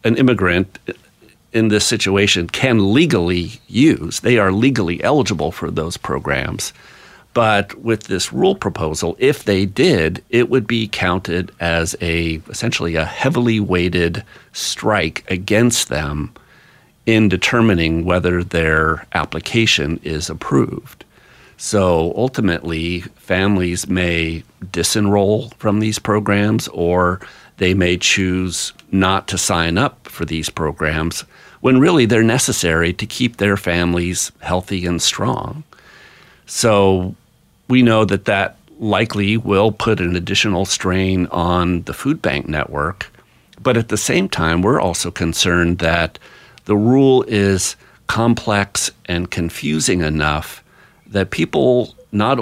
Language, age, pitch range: English, 50-69, 85-110 Hz